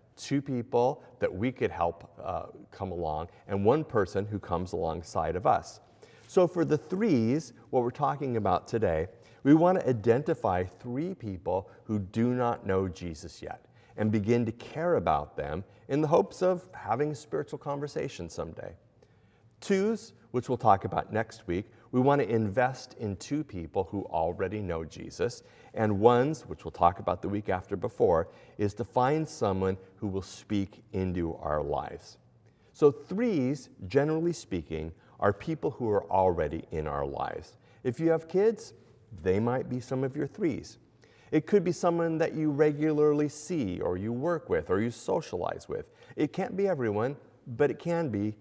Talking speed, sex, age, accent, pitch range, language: 170 wpm, male, 40-59, American, 100-150 Hz, English